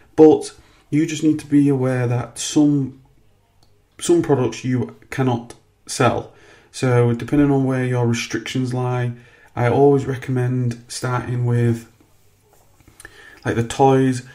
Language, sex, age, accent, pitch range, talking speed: English, male, 30-49, British, 115-130 Hz, 120 wpm